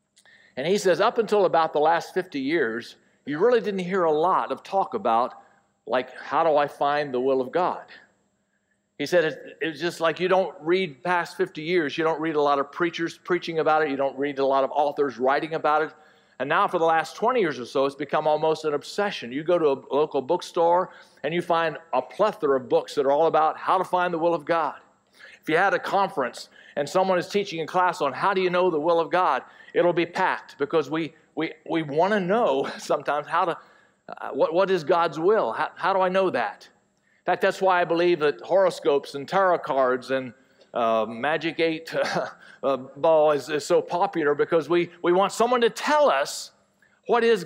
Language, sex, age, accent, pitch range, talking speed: English, male, 50-69, American, 150-190 Hz, 220 wpm